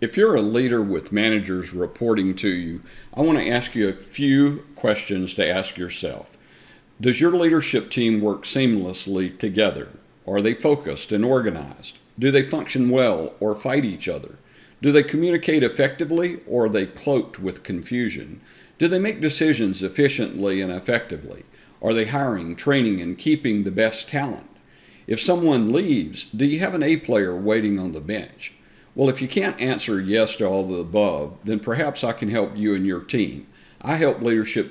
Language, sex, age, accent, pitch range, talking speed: English, male, 50-69, American, 100-135 Hz, 175 wpm